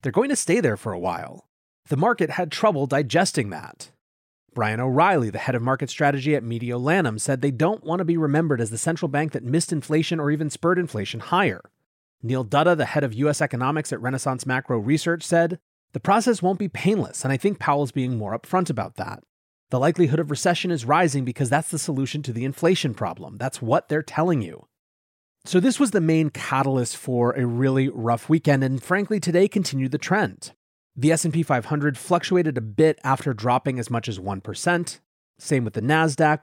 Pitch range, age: 125-165 Hz, 30-49